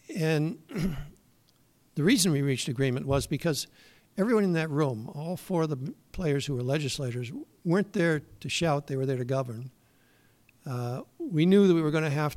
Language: English